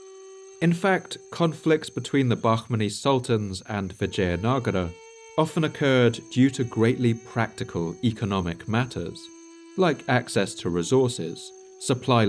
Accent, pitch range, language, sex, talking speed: British, 100-150 Hz, English, male, 105 wpm